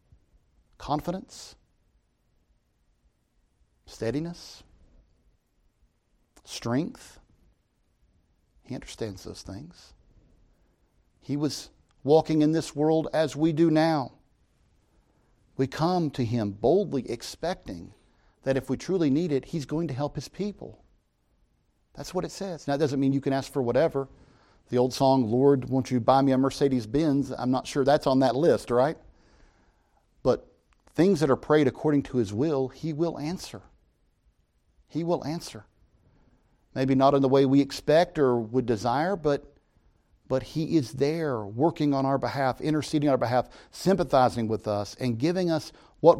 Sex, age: male, 50-69